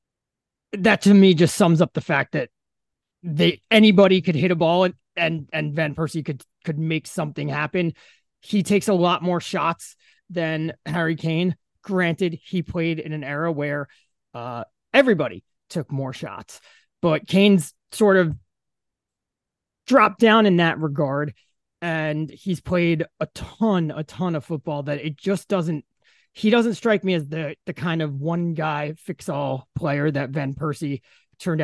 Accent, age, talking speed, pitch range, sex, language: American, 30-49, 155 wpm, 140-180 Hz, male, English